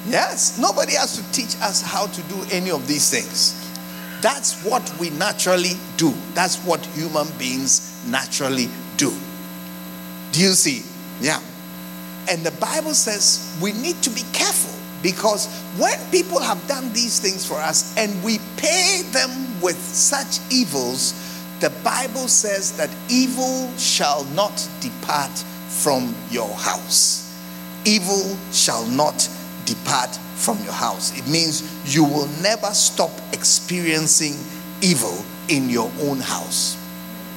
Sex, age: male, 50-69